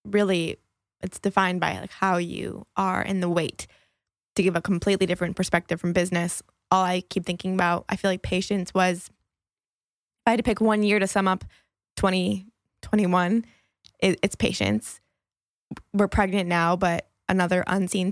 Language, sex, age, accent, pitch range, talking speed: English, female, 20-39, American, 170-200 Hz, 155 wpm